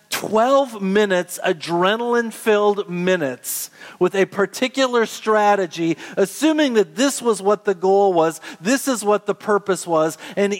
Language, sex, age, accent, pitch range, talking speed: English, male, 40-59, American, 160-205 Hz, 130 wpm